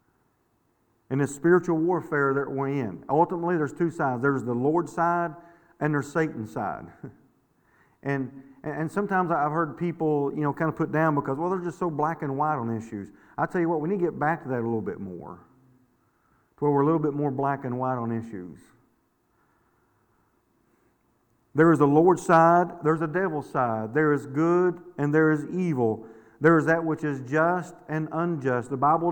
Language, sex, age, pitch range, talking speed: English, male, 50-69, 135-170 Hz, 190 wpm